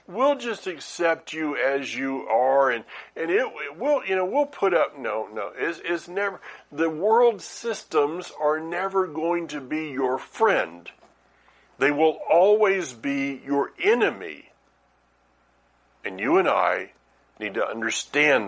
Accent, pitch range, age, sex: American, 105-165 Hz, 60-79, male